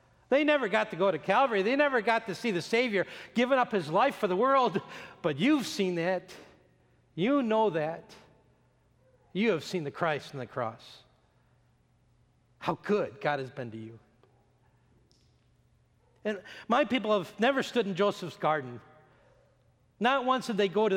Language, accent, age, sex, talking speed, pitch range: English, American, 40-59, male, 165 wpm, 155-225 Hz